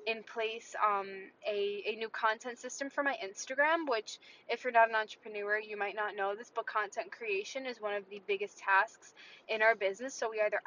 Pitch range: 220-270 Hz